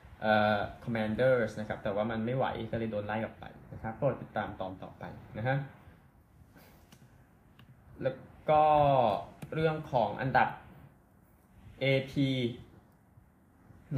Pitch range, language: 110-140 Hz, Thai